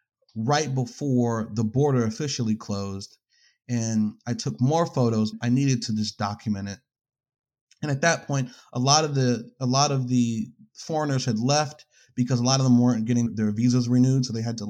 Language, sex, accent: English, male, American